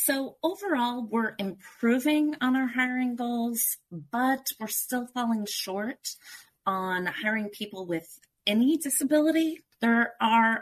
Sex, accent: female, American